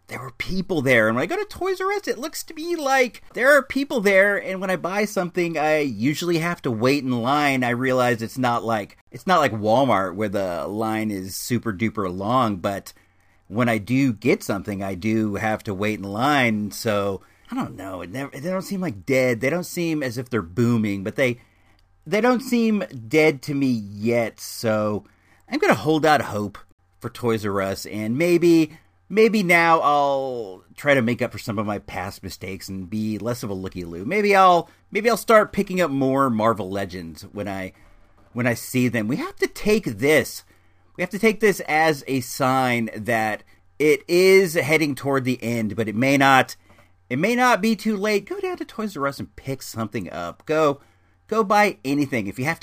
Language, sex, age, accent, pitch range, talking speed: English, male, 40-59, American, 105-170 Hz, 205 wpm